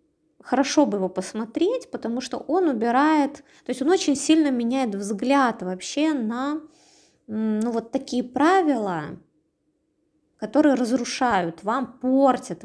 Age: 20-39